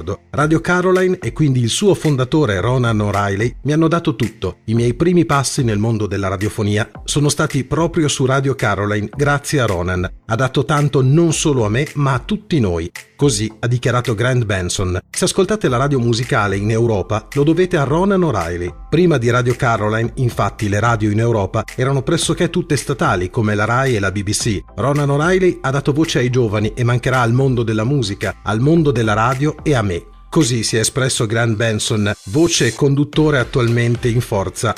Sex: male